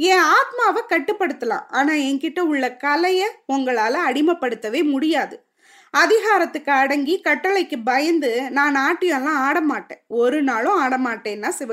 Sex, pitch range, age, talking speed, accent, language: female, 290-380 Hz, 20-39, 100 wpm, native, Tamil